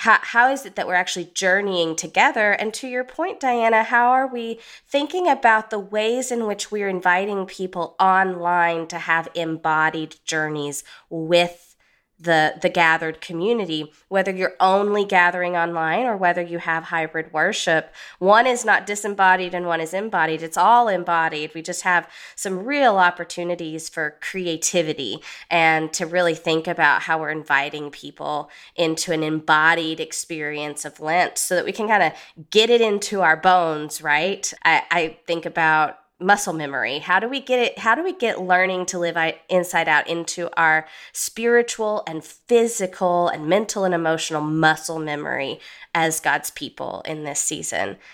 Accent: American